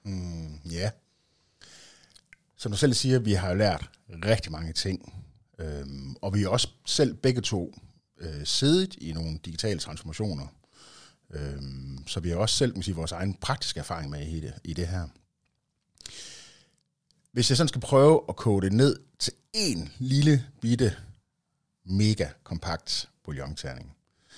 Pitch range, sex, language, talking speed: 80-120 Hz, male, Danish, 150 wpm